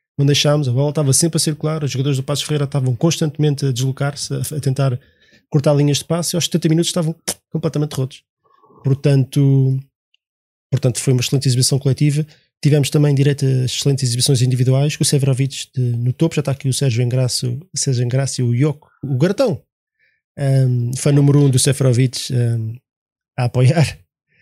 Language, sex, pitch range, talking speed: Portuguese, male, 125-150 Hz, 175 wpm